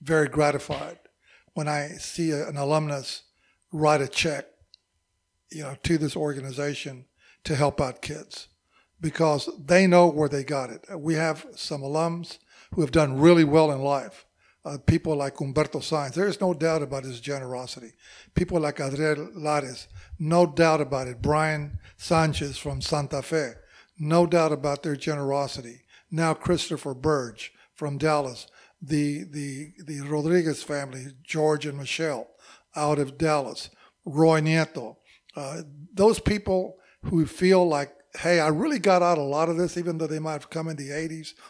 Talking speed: 155 wpm